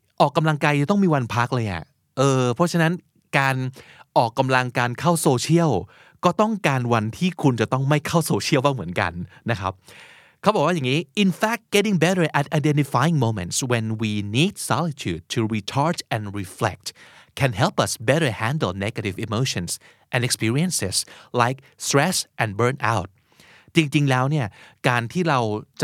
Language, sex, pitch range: Thai, male, 110-150 Hz